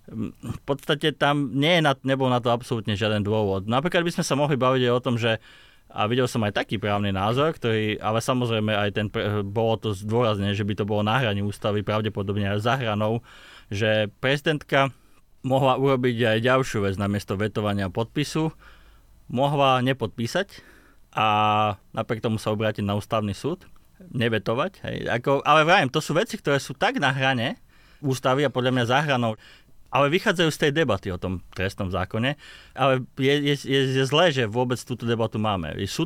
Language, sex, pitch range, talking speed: Slovak, male, 110-140 Hz, 170 wpm